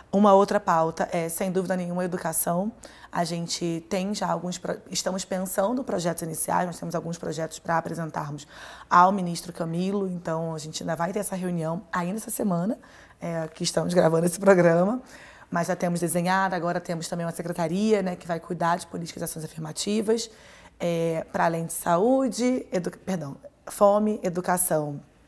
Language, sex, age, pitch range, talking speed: Portuguese, female, 20-39, 170-195 Hz, 165 wpm